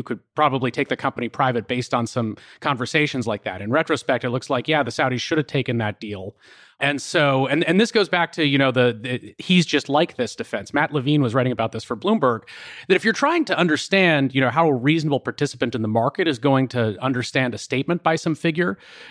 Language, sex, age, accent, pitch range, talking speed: English, male, 30-49, American, 125-155 Hz, 230 wpm